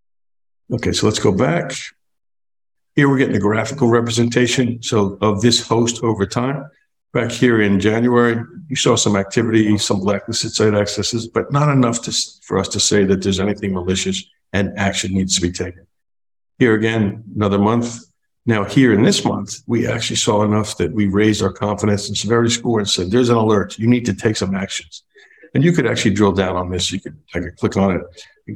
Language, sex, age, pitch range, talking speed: English, male, 60-79, 100-120 Hz, 200 wpm